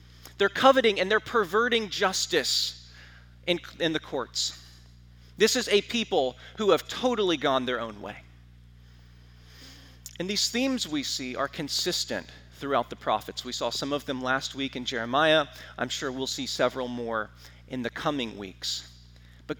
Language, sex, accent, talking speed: English, male, American, 155 wpm